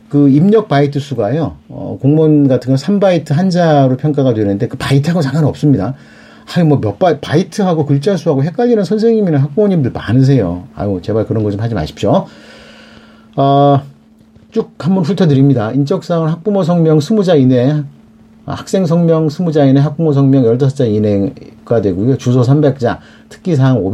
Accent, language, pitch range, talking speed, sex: Korean, English, 115-160 Hz, 130 wpm, male